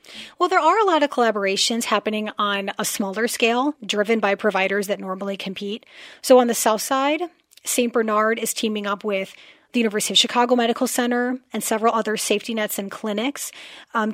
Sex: female